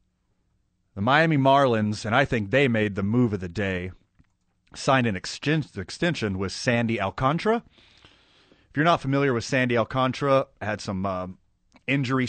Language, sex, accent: English, male, American